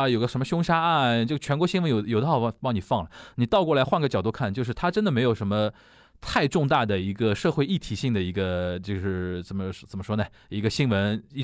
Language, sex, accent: Chinese, male, native